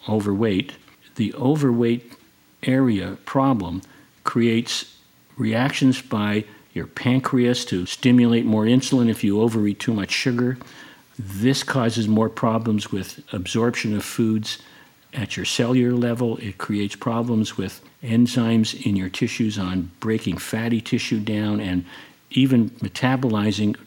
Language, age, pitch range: English, 50-69, 105-125 Hz